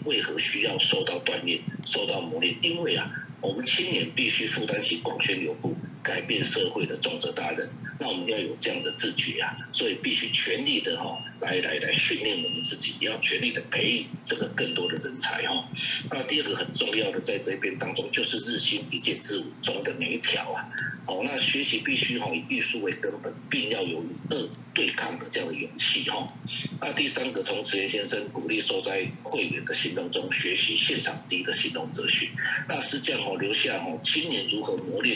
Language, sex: Chinese, male